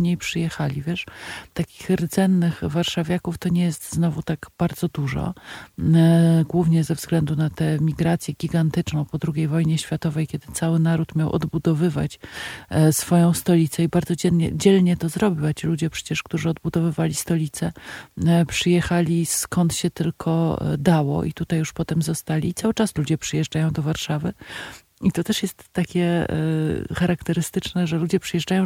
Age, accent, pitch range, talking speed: 40-59, native, 155-175 Hz, 145 wpm